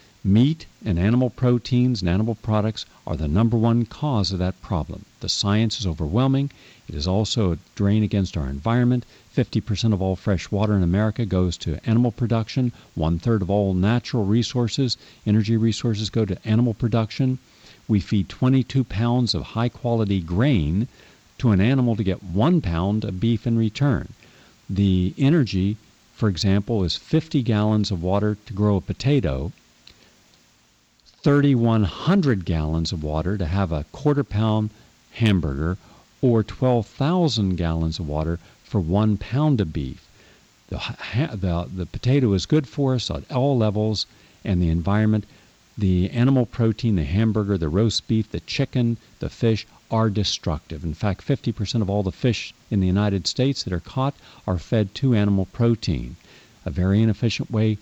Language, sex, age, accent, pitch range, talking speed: English, male, 50-69, American, 95-120 Hz, 165 wpm